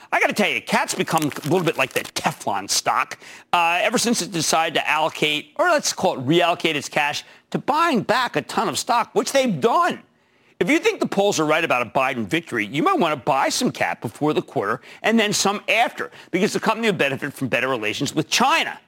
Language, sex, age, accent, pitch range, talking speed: English, male, 50-69, American, 145-210 Hz, 230 wpm